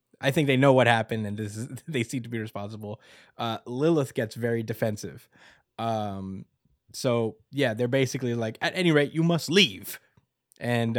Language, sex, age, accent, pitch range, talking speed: English, male, 20-39, American, 110-135 Hz, 175 wpm